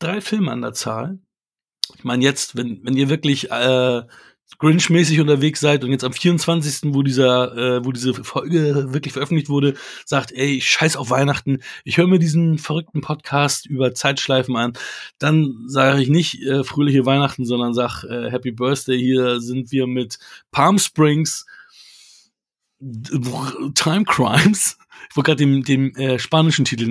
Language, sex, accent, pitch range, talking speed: German, male, German, 125-155 Hz, 155 wpm